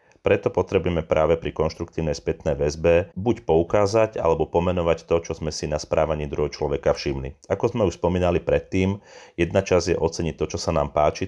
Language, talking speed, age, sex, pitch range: Slovak, 180 wpm, 40-59, male, 80-95 Hz